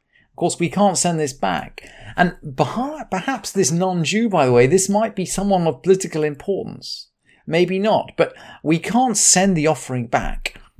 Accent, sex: British, male